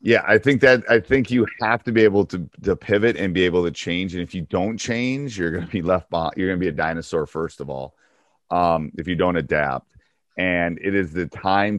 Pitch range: 85-110 Hz